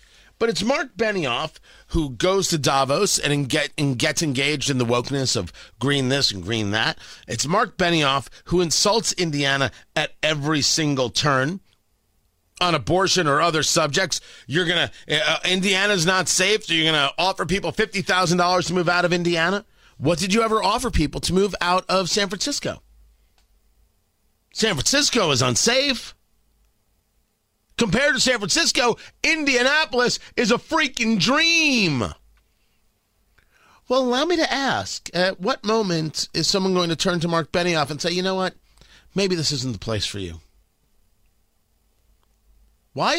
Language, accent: English, American